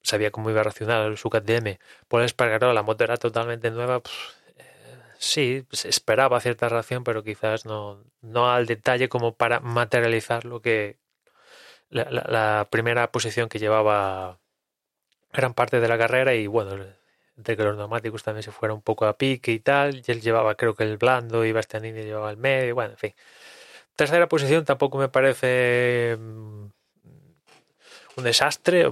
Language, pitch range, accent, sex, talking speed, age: Spanish, 110-125 Hz, Spanish, male, 180 wpm, 20-39